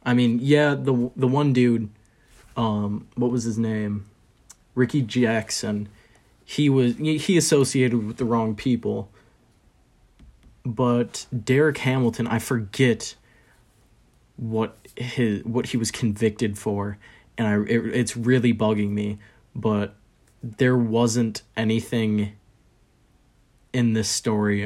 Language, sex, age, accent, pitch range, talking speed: English, male, 20-39, American, 105-120 Hz, 115 wpm